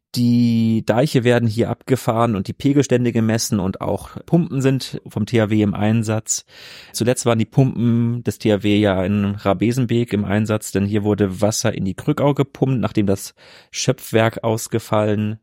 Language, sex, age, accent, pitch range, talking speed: German, male, 30-49, German, 100-120 Hz, 155 wpm